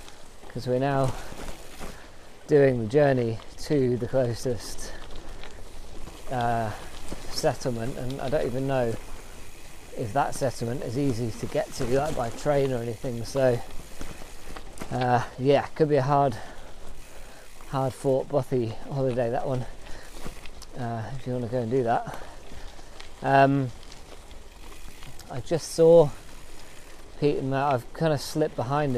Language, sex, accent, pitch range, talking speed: English, male, British, 110-135 Hz, 135 wpm